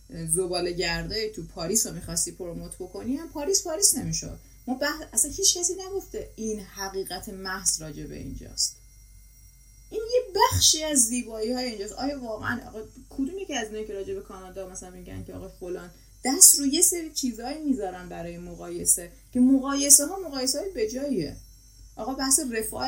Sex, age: female, 30-49